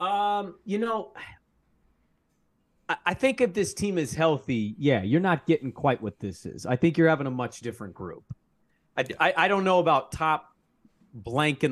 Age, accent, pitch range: 30-49, American, 110-145 Hz